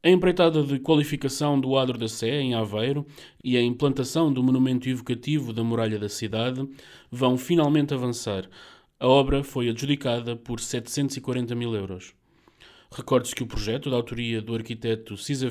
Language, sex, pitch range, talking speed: Portuguese, male, 115-140 Hz, 155 wpm